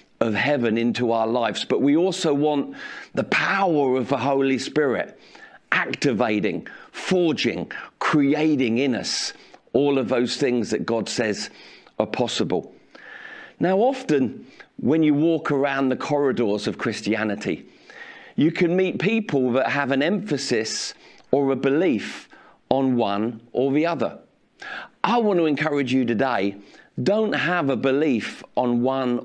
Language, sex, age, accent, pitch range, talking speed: English, male, 50-69, British, 125-165 Hz, 135 wpm